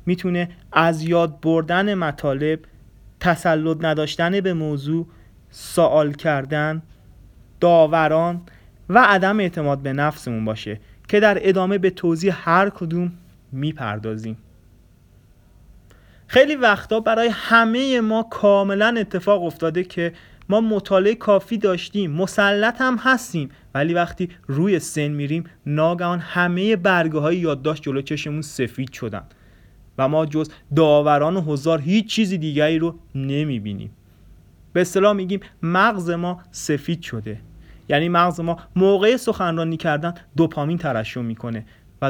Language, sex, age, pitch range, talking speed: Persian, male, 30-49, 140-190 Hz, 120 wpm